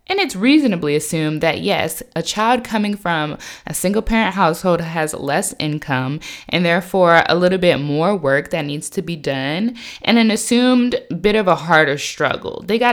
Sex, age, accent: female, 20-39, American